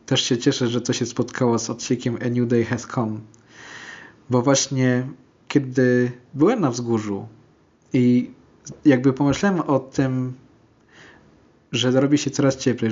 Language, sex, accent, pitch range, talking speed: Polish, male, native, 120-145 Hz, 140 wpm